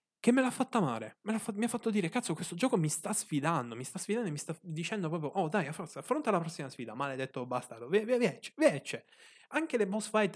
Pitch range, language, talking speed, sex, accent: 130-200 Hz, Italian, 230 wpm, male, native